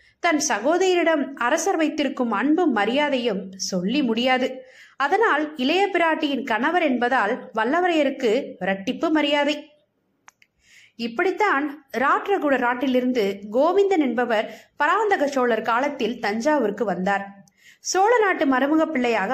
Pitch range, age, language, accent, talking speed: 235-305 Hz, 20-39, Tamil, native, 90 wpm